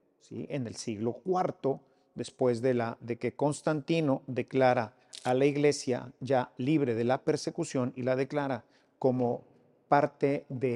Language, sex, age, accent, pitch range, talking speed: English, male, 50-69, Mexican, 125-175 Hz, 145 wpm